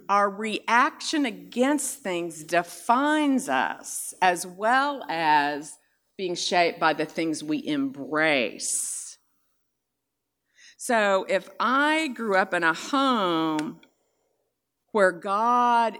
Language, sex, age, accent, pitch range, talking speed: English, female, 50-69, American, 170-250 Hz, 100 wpm